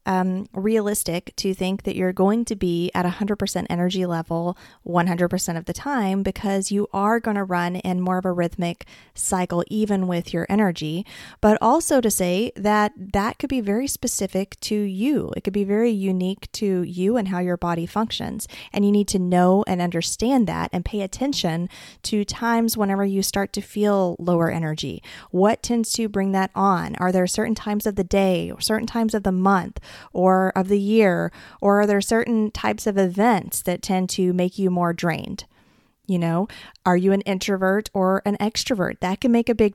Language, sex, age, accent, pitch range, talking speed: English, female, 30-49, American, 180-215 Hz, 195 wpm